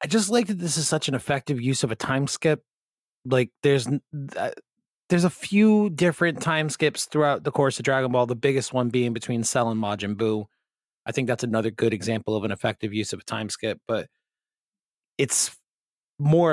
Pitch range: 110-140 Hz